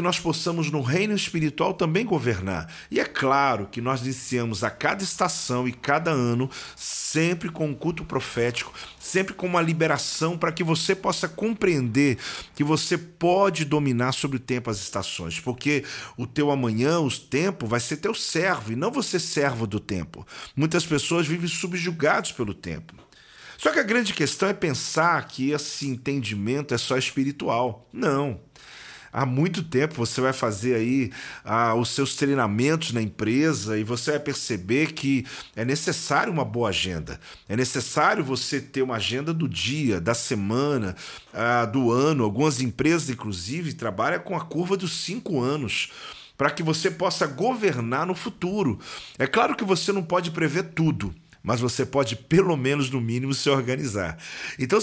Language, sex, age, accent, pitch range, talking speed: Portuguese, male, 40-59, Brazilian, 125-170 Hz, 165 wpm